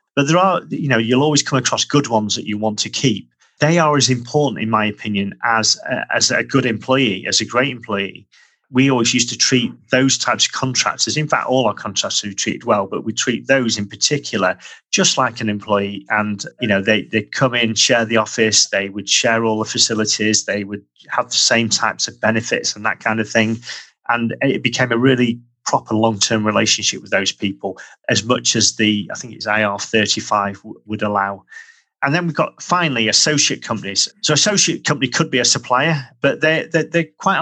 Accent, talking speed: British, 205 wpm